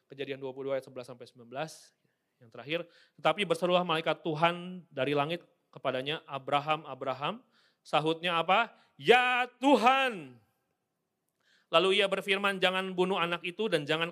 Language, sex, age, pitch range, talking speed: Indonesian, male, 30-49, 140-175 Hz, 125 wpm